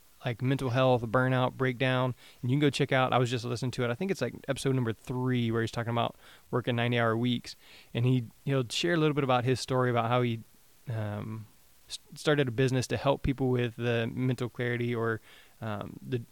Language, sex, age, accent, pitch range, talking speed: English, male, 20-39, American, 120-130 Hz, 215 wpm